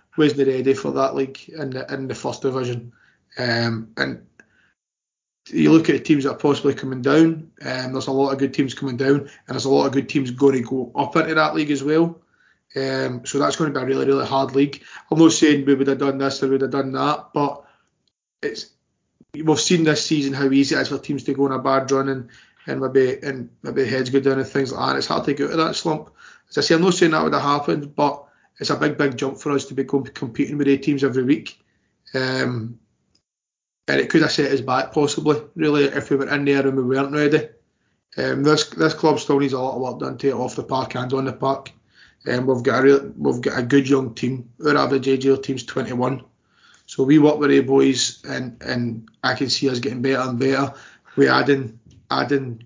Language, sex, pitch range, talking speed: English, male, 130-145 Hz, 245 wpm